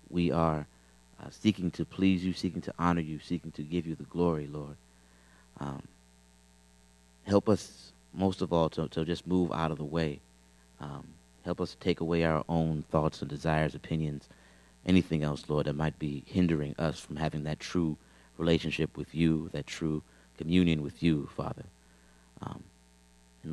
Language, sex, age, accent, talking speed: English, male, 30-49, American, 170 wpm